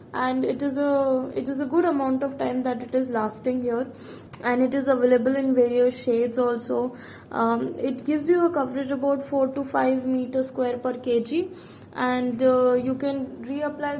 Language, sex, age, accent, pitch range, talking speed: English, female, 20-39, Indian, 245-275 Hz, 185 wpm